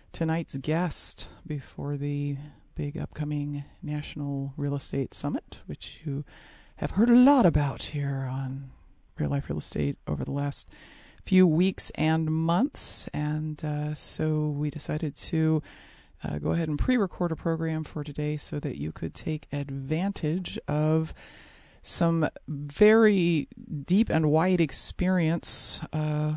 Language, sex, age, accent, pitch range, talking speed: English, female, 40-59, American, 145-175 Hz, 135 wpm